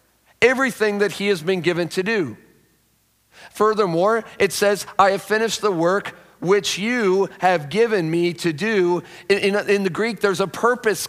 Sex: male